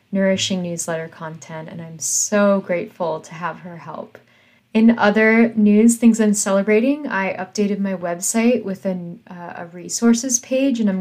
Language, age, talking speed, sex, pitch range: English, 20-39, 155 wpm, female, 180-220 Hz